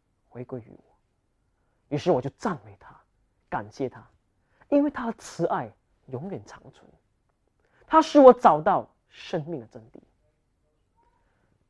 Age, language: 30-49, Chinese